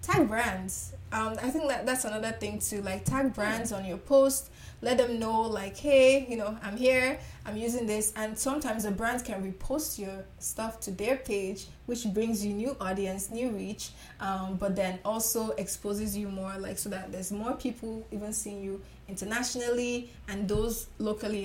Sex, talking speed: female, 185 wpm